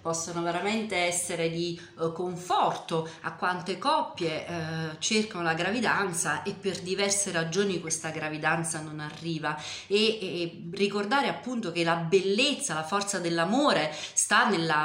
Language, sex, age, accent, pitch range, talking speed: Italian, female, 40-59, native, 160-200 Hz, 135 wpm